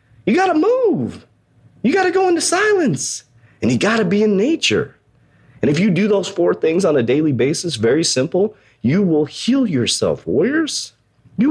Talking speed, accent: 190 wpm, American